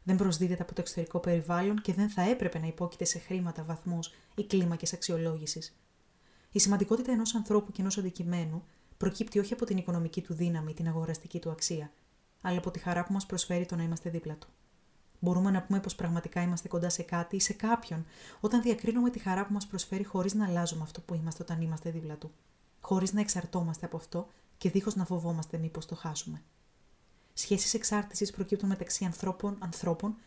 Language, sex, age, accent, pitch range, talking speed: Greek, female, 20-39, native, 170-200 Hz, 190 wpm